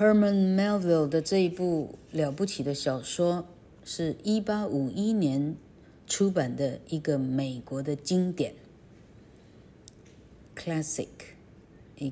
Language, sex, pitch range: Chinese, female, 140-195 Hz